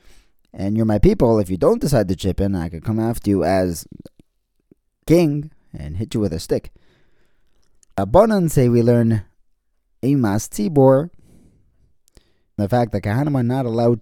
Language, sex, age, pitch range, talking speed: English, male, 20-39, 95-135 Hz, 145 wpm